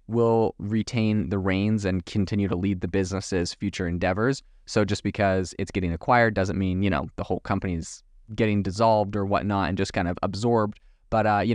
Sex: male